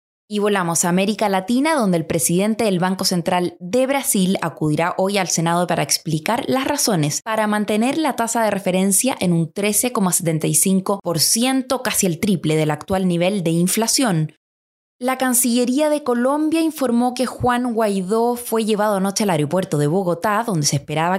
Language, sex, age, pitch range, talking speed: Spanish, female, 20-39, 175-245 Hz, 160 wpm